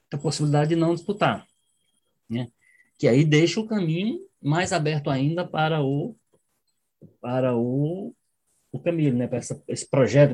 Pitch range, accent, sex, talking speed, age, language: 130-170 Hz, Brazilian, male, 145 wpm, 20-39, Portuguese